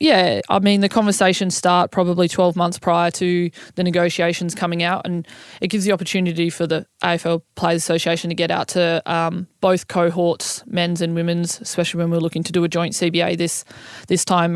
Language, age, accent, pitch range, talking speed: English, 20-39, Australian, 165-180 Hz, 195 wpm